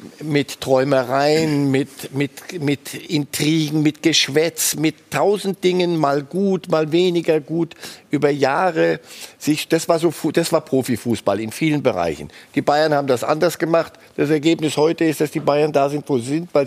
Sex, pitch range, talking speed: male, 135-160 Hz, 155 wpm